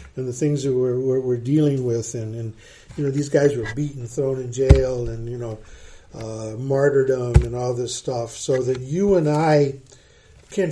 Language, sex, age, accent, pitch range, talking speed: English, male, 50-69, American, 120-155 Hz, 195 wpm